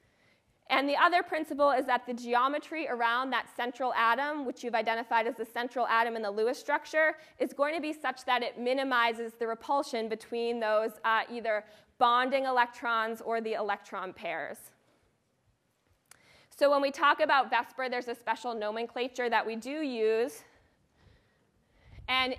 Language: English